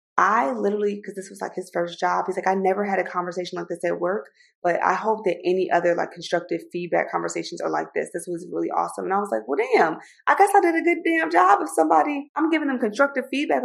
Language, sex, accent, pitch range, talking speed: English, female, American, 180-230 Hz, 255 wpm